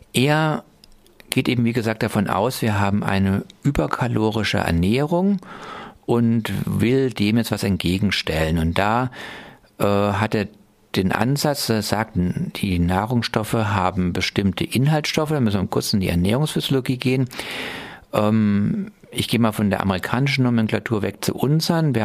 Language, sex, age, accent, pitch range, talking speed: German, male, 50-69, German, 95-125 Hz, 140 wpm